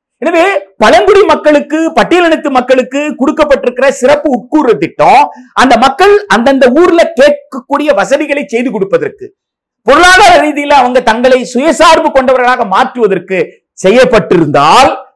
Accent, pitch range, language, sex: native, 220-325 Hz, Tamil, male